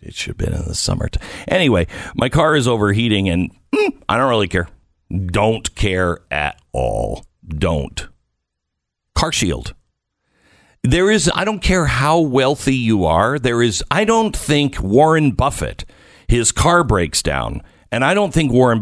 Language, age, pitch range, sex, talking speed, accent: English, 50-69, 90-150 Hz, male, 160 wpm, American